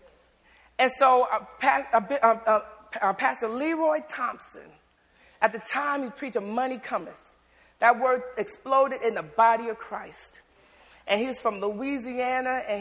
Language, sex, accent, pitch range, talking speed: English, female, American, 230-320 Hz, 150 wpm